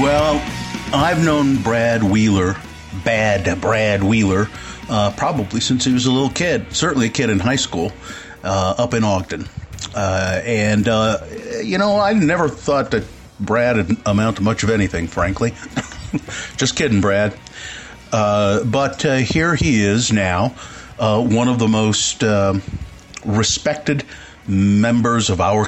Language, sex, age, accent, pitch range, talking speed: English, male, 50-69, American, 100-130 Hz, 145 wpm